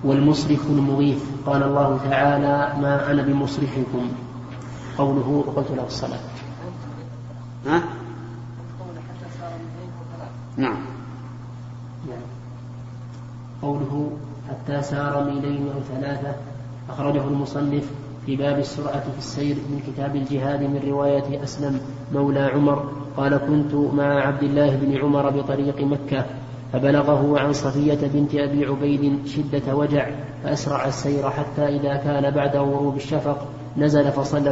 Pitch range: 135-145 Hz